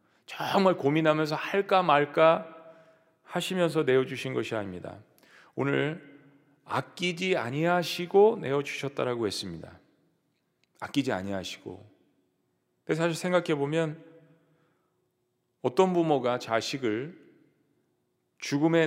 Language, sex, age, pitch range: Korean, male, 40-59, 145-175 Hz